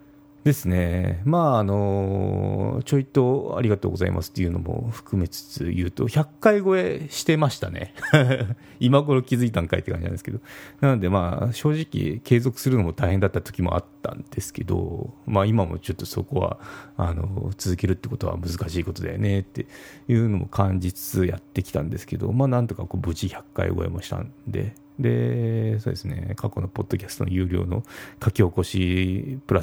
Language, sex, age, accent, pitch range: Japanese, male, 30-49, native, 95-135 Hz